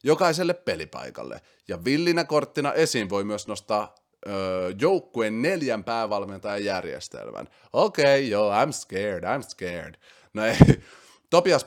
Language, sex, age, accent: Finnish, male, 30-49, native